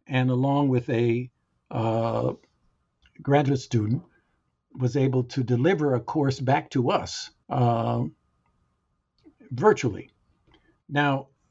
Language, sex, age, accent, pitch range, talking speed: English, male, 50-69, American, 125-165 Hz, 100 wpm